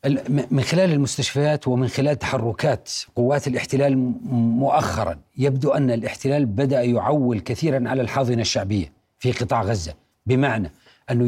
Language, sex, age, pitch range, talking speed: Arabic, male, 40-59, 130-175 Hz, 120 wpm